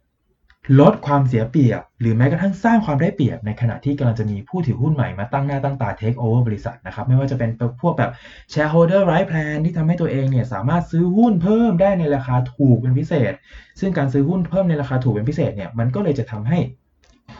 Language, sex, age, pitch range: Thai, male, 20-39, 115-155 Hz